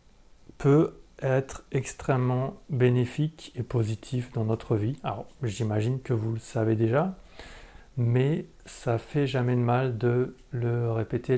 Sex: male